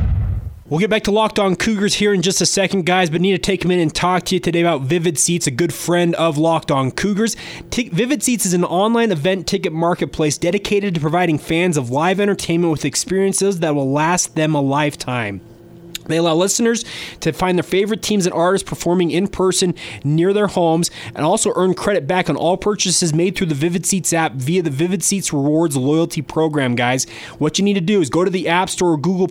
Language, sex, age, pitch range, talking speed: English, male, 20-39, 150-185 Hz, 220 wpm